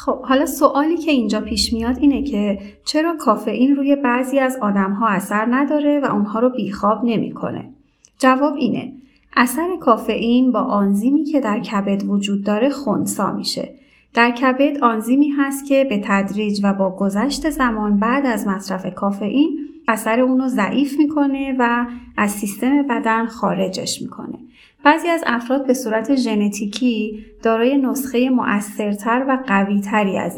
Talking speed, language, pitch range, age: 145 wpm, Persian, 210-270 Hz, 30-49